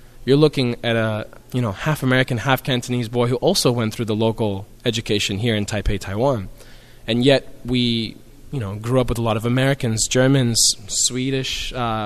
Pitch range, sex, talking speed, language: 100-125 Hz, male, 180 wpm, English